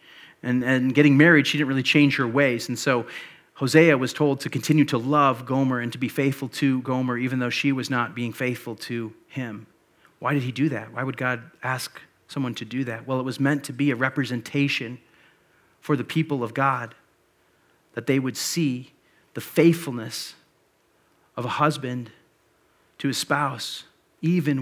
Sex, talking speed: male, 180 wpm